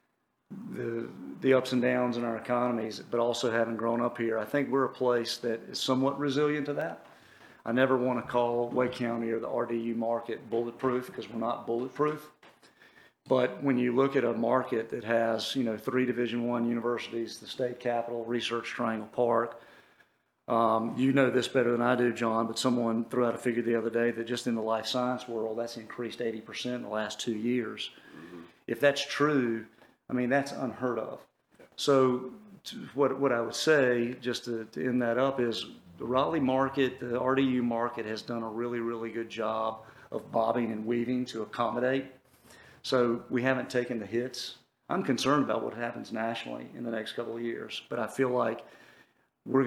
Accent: American